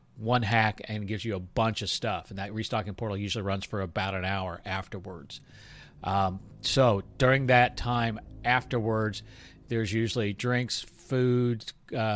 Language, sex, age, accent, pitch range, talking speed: English, male, 40-59, American, 105-130 Hz, 155 wpm